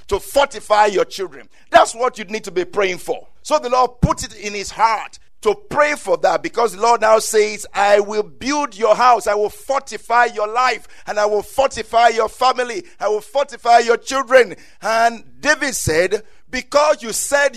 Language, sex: English, male